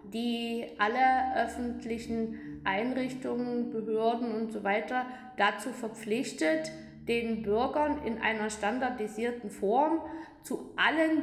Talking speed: 95 wpm